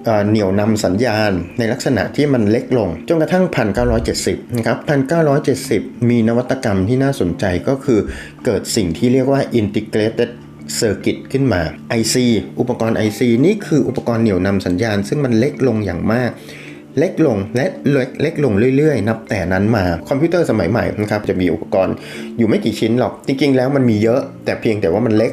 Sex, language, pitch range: male, Thai, 95-130 Hz